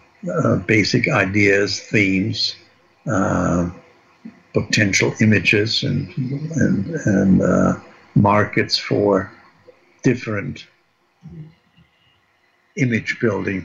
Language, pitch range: English, 100-120 Hz